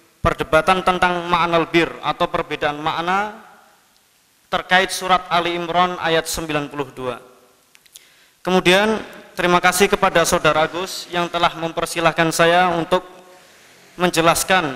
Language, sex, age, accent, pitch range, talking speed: Indonesian, male, 20-39, native, 170-205 Hz, 100 wpm